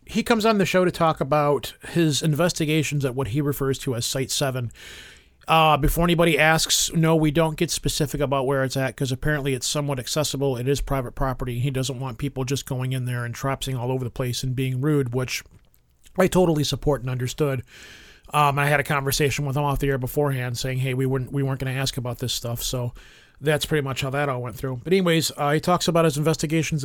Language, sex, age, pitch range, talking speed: English, male, 40-59, 130-155 Hz, 230 wpm